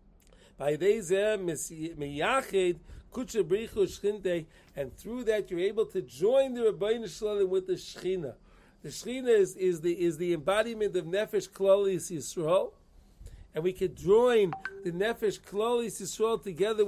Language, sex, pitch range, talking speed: English, male, 175-205 Hz, 125 wpm